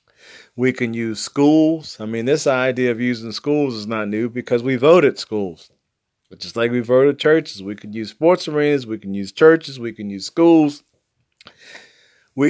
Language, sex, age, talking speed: English, male, 40-59, 180 wpm